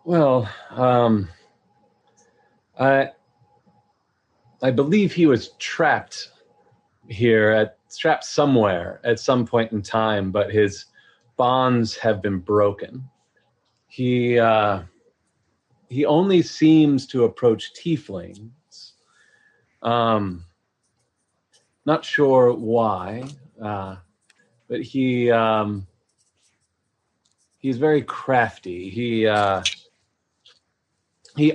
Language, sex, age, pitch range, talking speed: English, male, 30-49, 105-125 Hz, 85 wpm